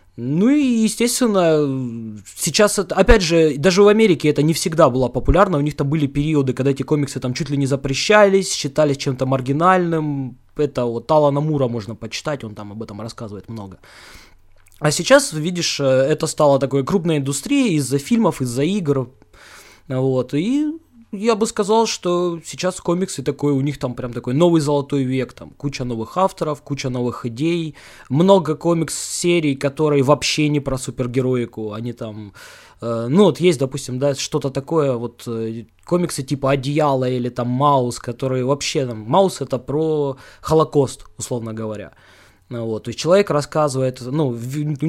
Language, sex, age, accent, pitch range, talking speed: Russian, male, 20-39, native, 125-160 Hz, 160 wpm